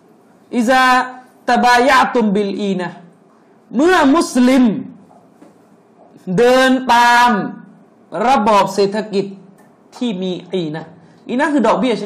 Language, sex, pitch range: Thai, male, 210-280 Hz